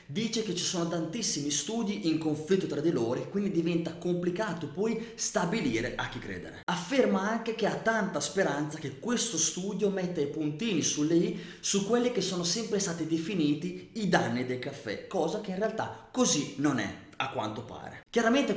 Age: 20-39